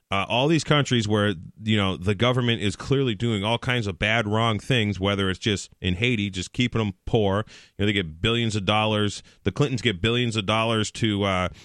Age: 30-49